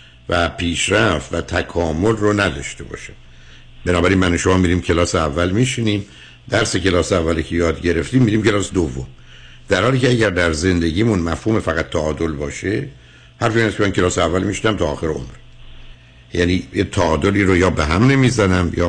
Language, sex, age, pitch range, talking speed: Persian, male, 60-79, 80-110 Hz, 165 wpm